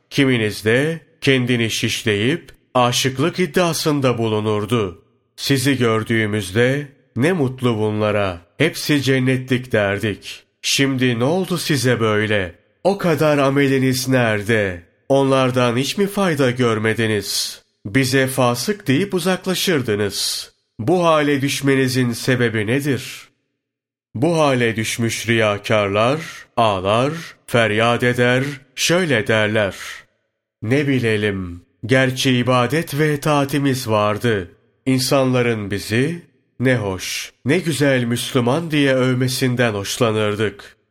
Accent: native